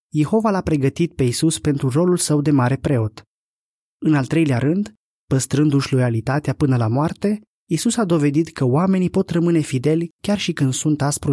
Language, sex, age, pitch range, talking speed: Romanian, male, 20-39, 135-175 Hz, 175 wpm